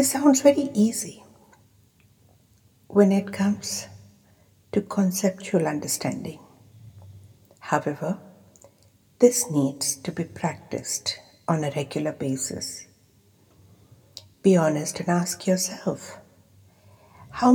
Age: 60-79